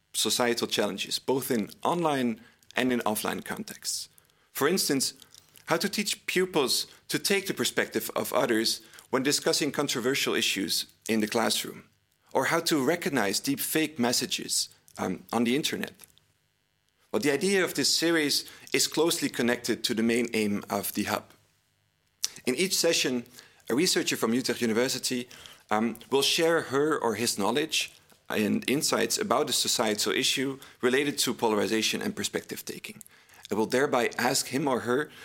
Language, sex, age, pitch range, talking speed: English, male, 40-59, 110-145 Hz, 150 wpm